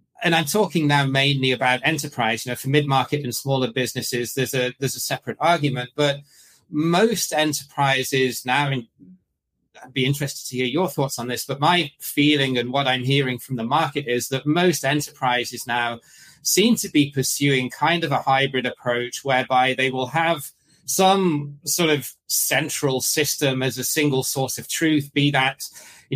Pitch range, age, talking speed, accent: 125-145 Hz, 30-49, 175 wpm, British